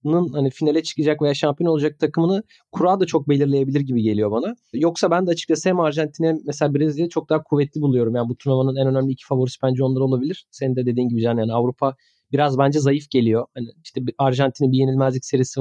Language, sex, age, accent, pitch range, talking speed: Turkish, male, 30-49, native, 130-170 Hz, 205 wpm